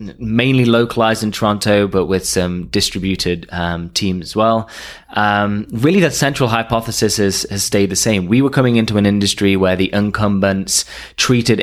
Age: 20-39